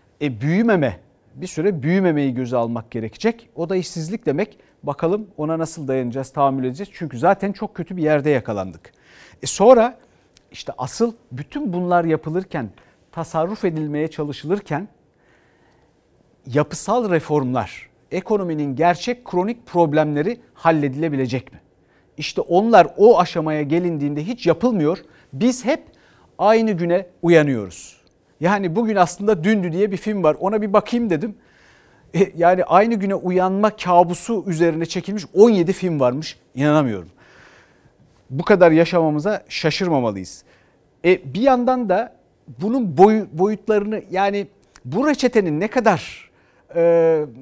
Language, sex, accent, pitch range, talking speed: Turkish, male, native, 150-205 Hz, 115 wpm